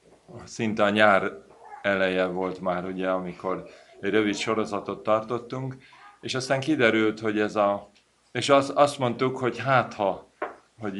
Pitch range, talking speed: 95-115 Hz, 140 wpm